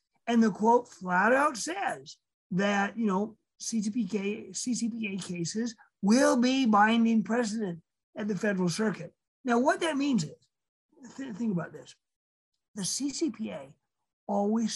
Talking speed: 130 wpm